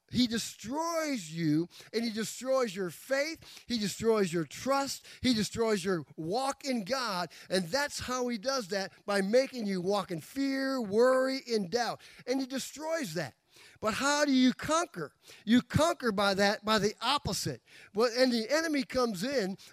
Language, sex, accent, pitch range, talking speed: English, male, American, 220-285 Hz, 165 wpm